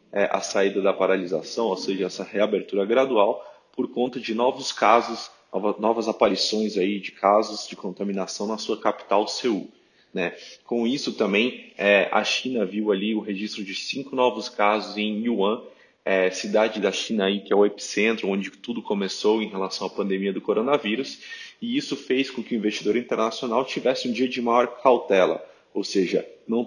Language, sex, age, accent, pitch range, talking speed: Portuguese, male, 20-39, Brazilian, 105-130 Hz, 165 wpm